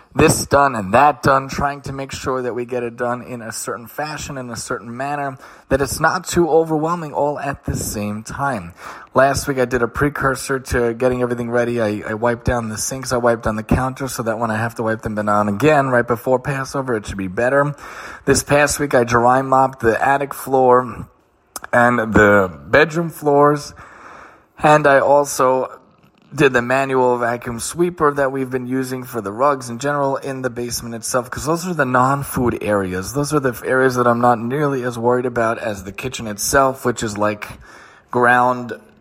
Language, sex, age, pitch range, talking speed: English, male, 30-49, 120-140 Hz, 200 wpm